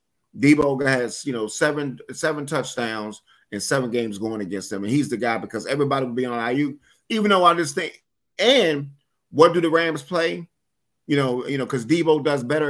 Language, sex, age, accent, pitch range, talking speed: English, male, 30-49, American, 130-165 Hz, 200 wpm